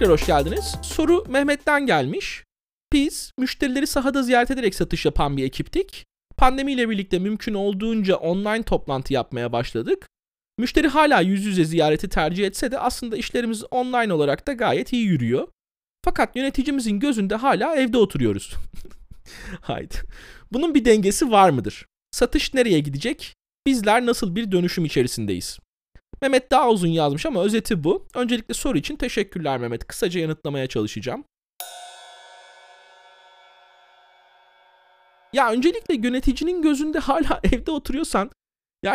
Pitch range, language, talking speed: 170-270 Hz, Turkish, 130 wpm